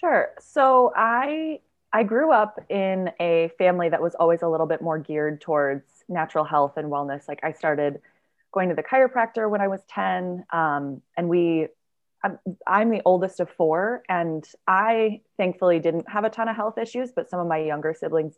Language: English